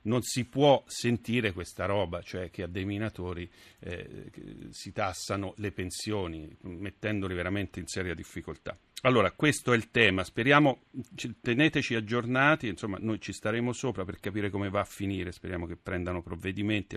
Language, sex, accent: Italian, male, native